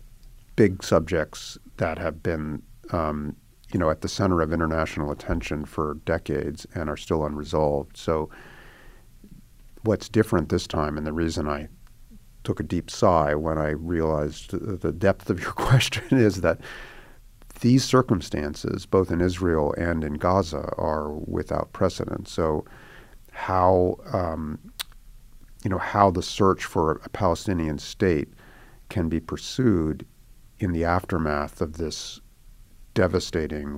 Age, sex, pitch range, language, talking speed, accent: 50-69, male, 80-105 Hz, English, 135 wpm, American